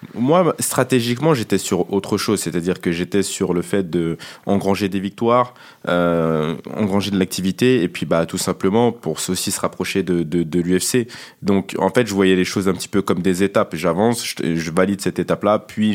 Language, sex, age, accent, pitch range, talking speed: French, male, 20-39, French, 90-105 Hz, 200 wpm